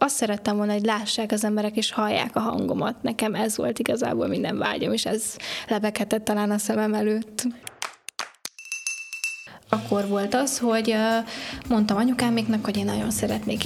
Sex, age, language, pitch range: female, 20-39, Hungarian, 210-230 Hz